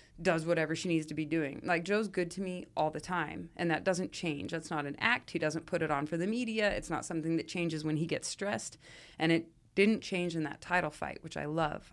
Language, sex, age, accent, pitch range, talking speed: English, female, 30-49, American, 155-185 Hz, 255 wpm